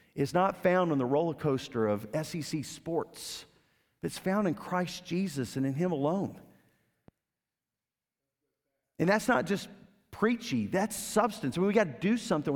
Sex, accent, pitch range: male, American, 115-175 Hz